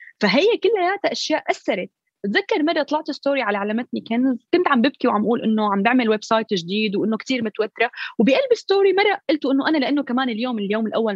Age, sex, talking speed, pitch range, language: 20-39, female, 200 wpm, 215-305 Hz, Arabic